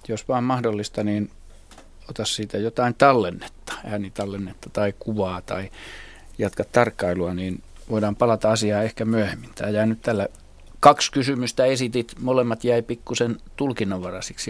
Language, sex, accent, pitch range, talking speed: Finnish, male, native, 100-120 Hz, 120 wpm